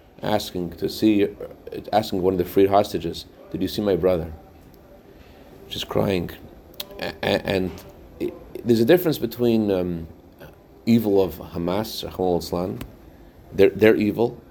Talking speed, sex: 130 wpm, male